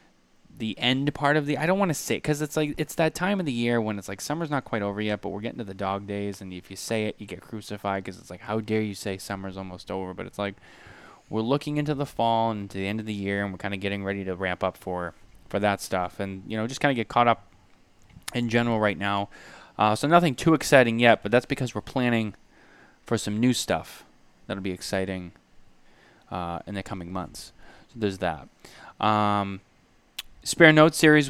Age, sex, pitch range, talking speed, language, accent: 10-29, male, 100-130 Hz, 240 wpm, English, American